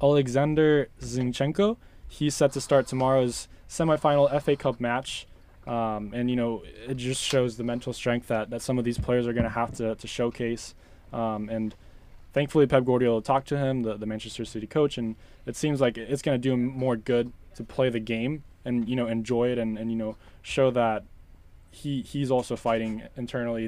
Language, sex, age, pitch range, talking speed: English, male, 20-39, 110-135 Hz, 200 wpm